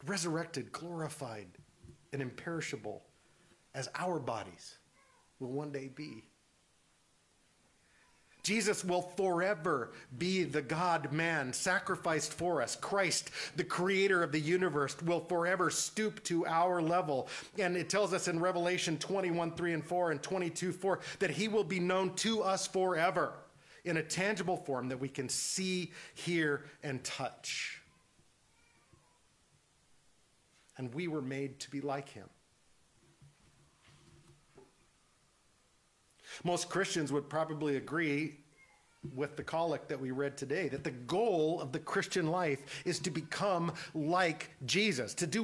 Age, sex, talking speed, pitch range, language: 40-59, male, 130 wpm, 150-195 Hz, English